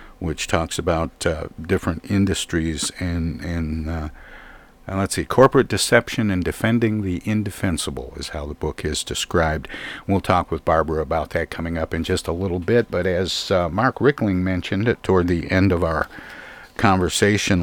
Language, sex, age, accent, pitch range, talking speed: English, male, 50-69, American, 85-95 Hz, 165 wpm